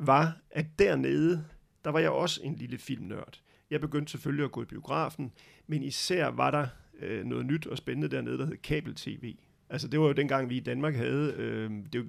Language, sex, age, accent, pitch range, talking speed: Danish, male, 30-49, native, 120-150 Hz, 200 wpm